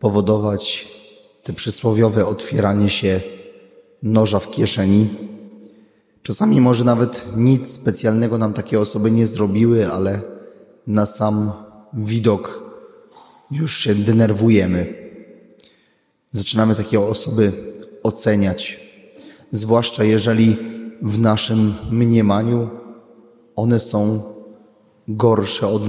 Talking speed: 90 wpm